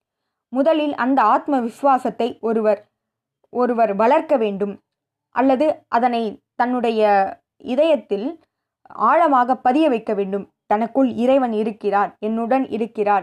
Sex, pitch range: female, 205-260 Hz